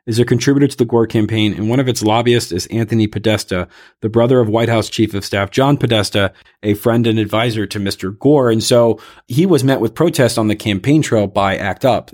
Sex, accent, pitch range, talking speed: male, American, 95-115 Hz, 230 wpm